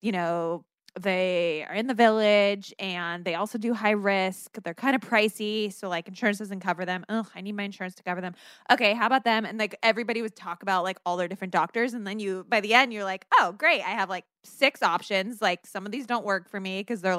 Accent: American